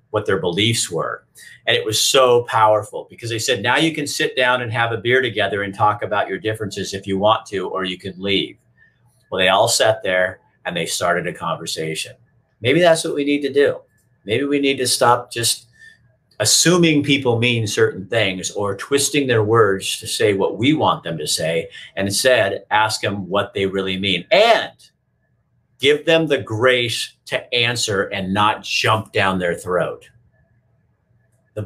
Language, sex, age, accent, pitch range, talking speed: English, male, 50-69, American, 100-135 Hz, 185 wpm